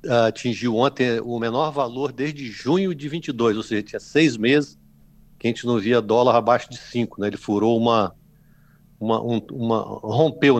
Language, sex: Portuguese, male